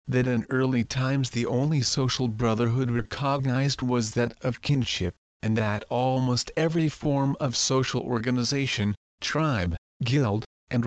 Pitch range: 115-140 Hz